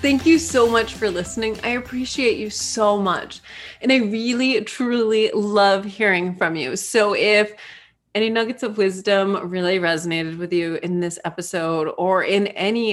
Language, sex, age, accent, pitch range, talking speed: English, female, 20-39, American, 185-230 Hz, 160 wpm